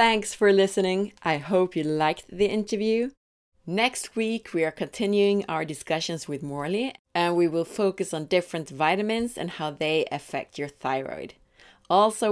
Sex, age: female, 30-49